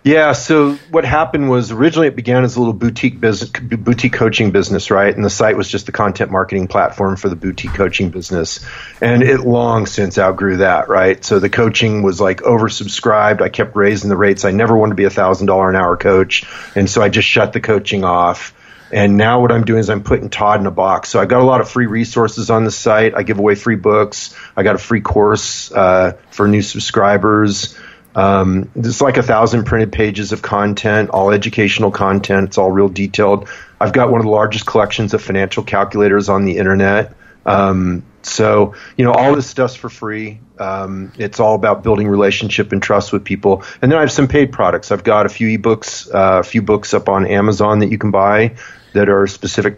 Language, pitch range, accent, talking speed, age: English, 100-115 Hz, American, 215 wpm, 40-59